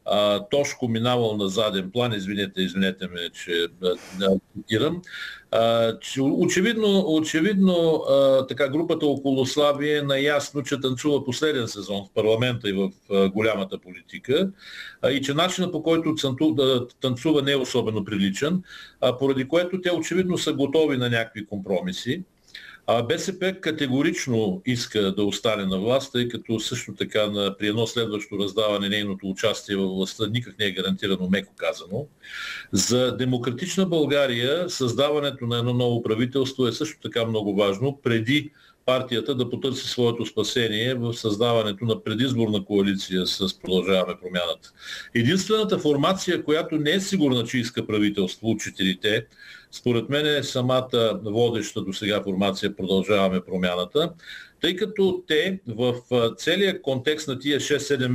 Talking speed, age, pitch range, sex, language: 135 wpm, 50-69, 110-150 Hz, male, Bulgarian